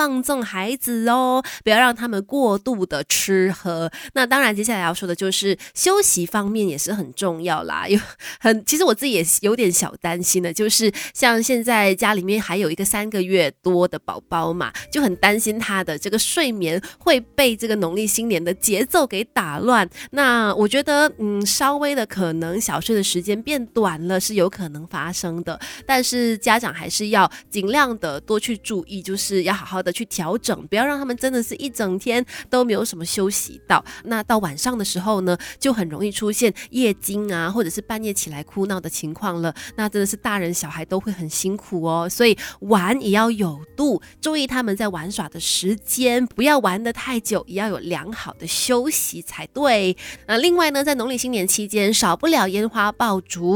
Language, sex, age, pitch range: Chinese, female, 20-39, 185-240 Hz